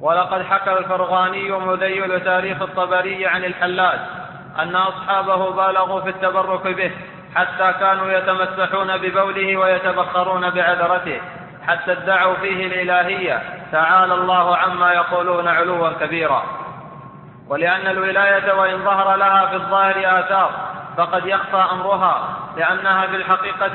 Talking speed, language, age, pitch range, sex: 110 wpm, Arabic, 20-39, 185-195 Hz, male